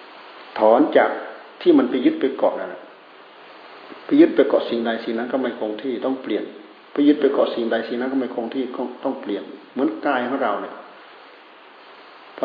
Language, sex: Thai, male